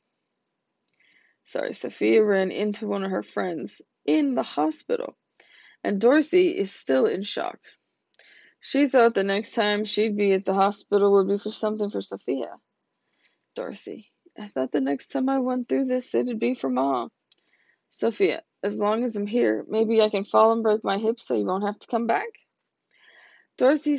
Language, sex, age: English, female, 20-39